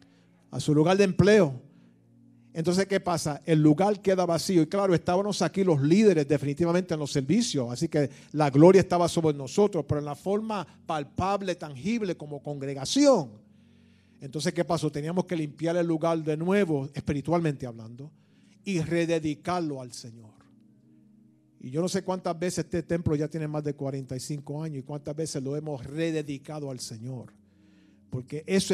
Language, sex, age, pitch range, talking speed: English, male, 50-69, 145-180 Hz, 160 wpm